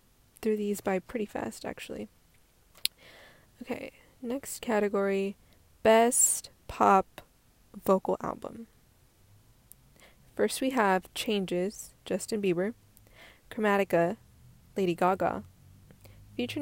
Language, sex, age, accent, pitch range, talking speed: English, female, 20-39, American, 175-250 Hz, 85 wpm